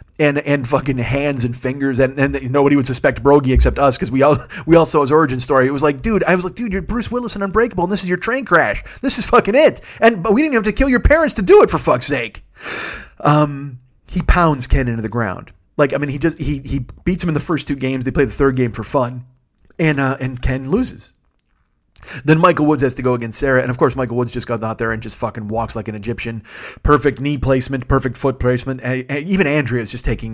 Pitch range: 120-150 Hz